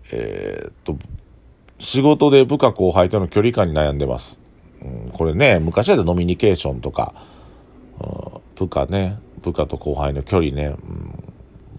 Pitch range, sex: 80-120 Hz, male